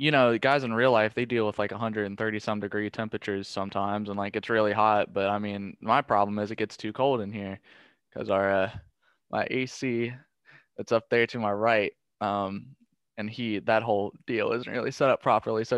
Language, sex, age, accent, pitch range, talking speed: English, male, 20-39, American, 105-120 Hz, 215 wpm